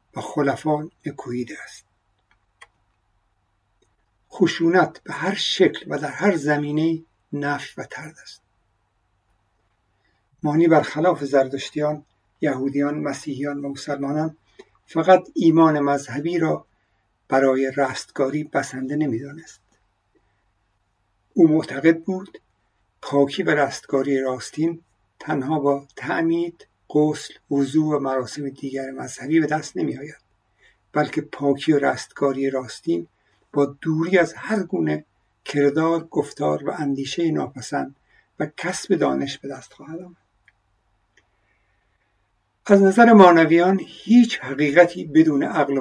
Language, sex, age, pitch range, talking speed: Persian, male, 60-79, 115-165 Hz, 100 wpm